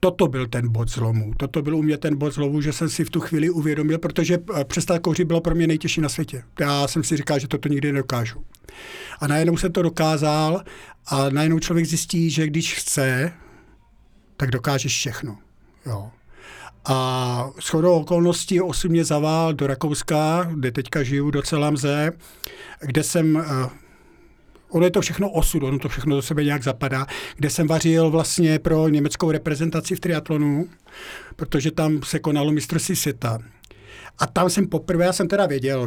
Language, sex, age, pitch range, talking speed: Czech, male, 50-69, 140-165 Hz, 170 wpm